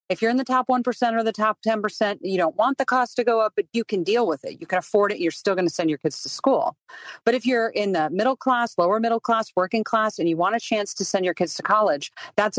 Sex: female